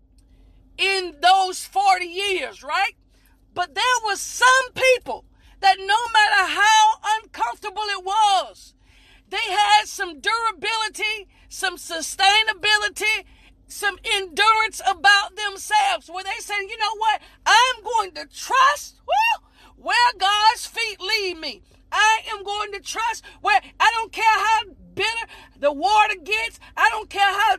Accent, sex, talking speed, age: American, female, 130 wpm, 40-59